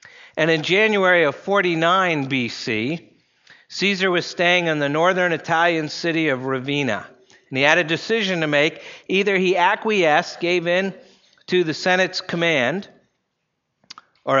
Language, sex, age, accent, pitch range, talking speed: English, male, 50-69, American, 140-180 Hz, 140 wpm